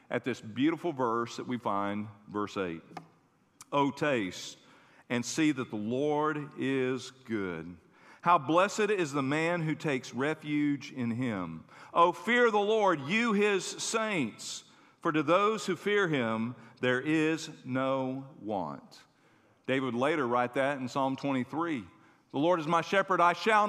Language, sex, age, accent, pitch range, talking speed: English, male, 50-69, American, 135-205 Hz, 155 wpm